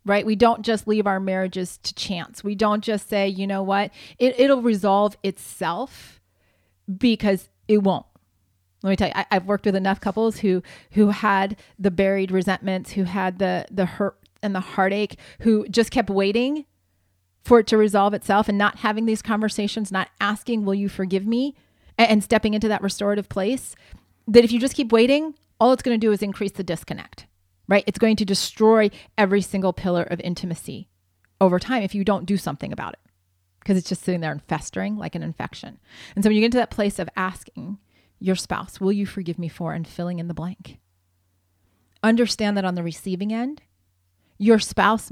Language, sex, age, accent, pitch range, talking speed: English, female, 30-49, American, 175-215 Hz, 195 wpm